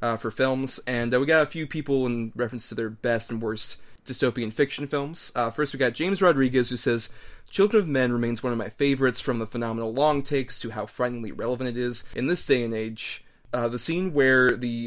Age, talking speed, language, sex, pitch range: 30-49, 230 wpm, English, male, 115-135 Hz